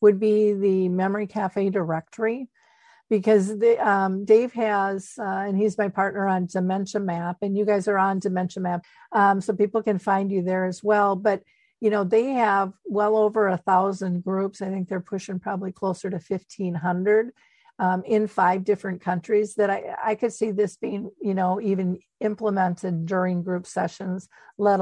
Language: English